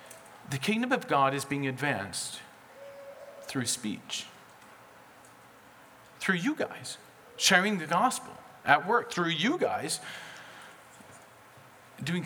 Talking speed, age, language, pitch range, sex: 105 wpm, 40-59, English, 135-210 Hz, male